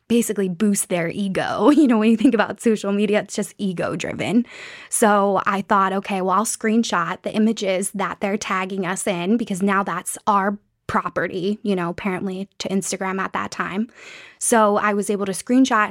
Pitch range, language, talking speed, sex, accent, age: 195-225 Hz, English, 185 wpm, female, American, 10-29